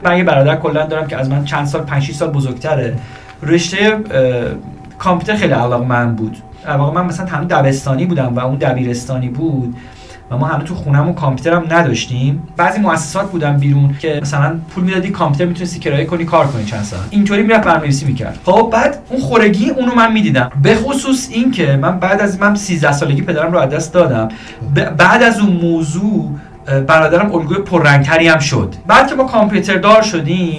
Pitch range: 130-175 Hz